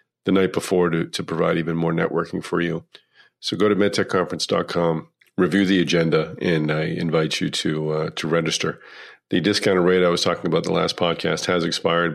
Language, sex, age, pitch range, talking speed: English, male, 50-69, 80-90 Hz, 190 wpm